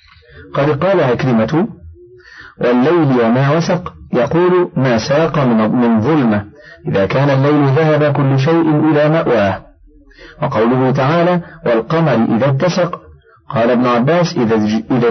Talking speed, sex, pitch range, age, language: 110 wpm, male, 115-155 Hz, 50-69, Arabic